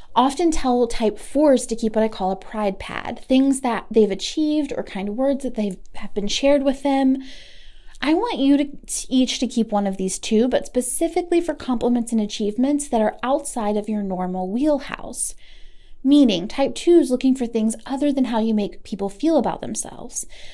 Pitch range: 210-275 Hz